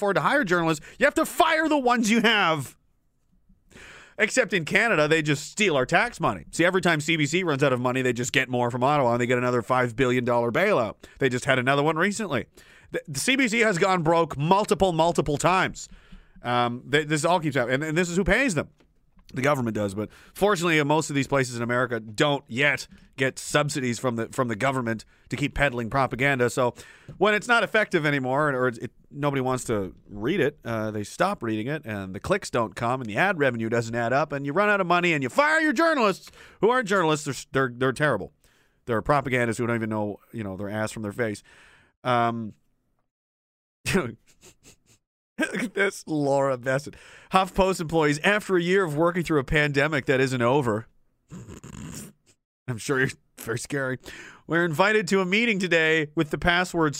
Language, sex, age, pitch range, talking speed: English, male, 30-49, 130-185 Hz, 200 wpm